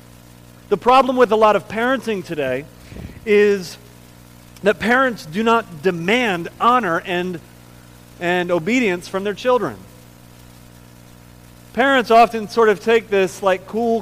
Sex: male